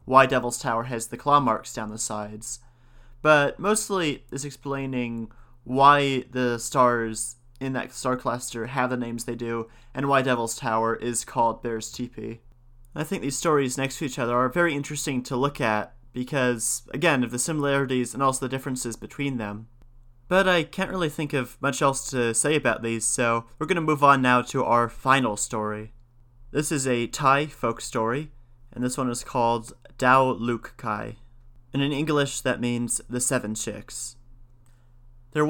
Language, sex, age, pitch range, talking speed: English, male, 30-49, 120-140 Hz, 175 wpm